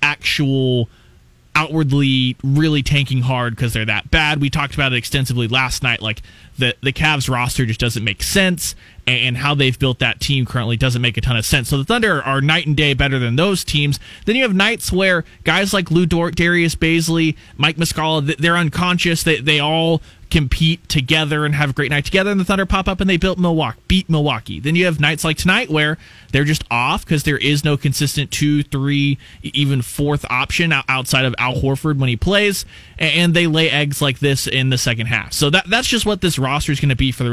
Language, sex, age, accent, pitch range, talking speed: English, male, 20-39, American, 125-165 Hz, 220 wpm